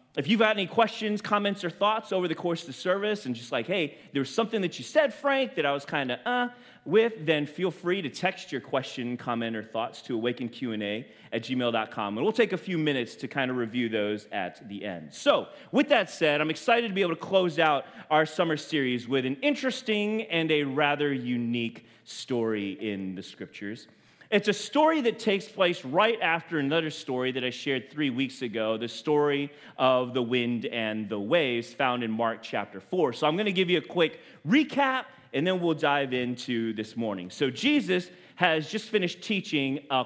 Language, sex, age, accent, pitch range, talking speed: English, male, 30-49, American, 120-185 Hz, 205 wpm